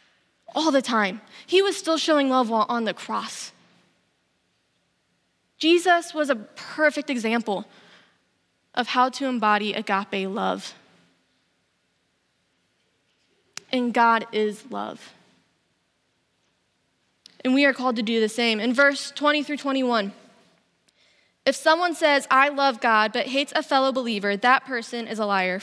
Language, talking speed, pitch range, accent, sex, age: English, 130 wpm, 225-290 Hz, American, female, 20-39